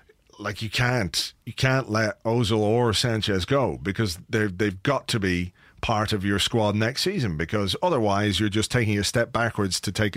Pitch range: 105-120 Hz